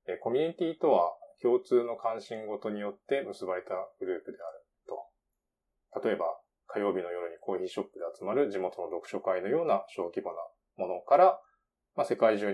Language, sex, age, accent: Japanese, male, 20-39, native